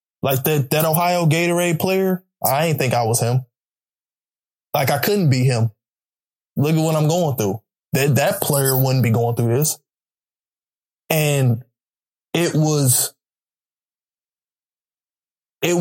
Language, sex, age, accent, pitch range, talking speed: English, male, 20-39, American, 130-165 Hz, 135 wpm